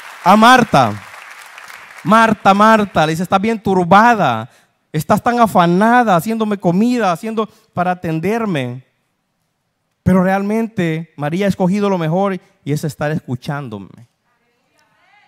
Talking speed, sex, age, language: 110 wpm, male, 30-49, Spanish